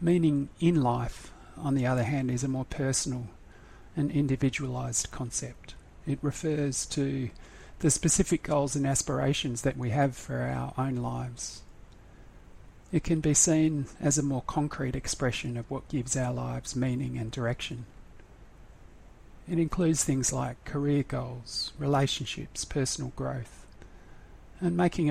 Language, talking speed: English, 135 wpm